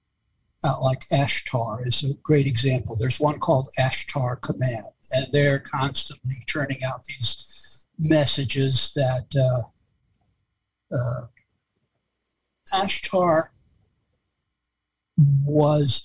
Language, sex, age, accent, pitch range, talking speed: English, male, 60-79, American, 125-160 Hz, 85 wpm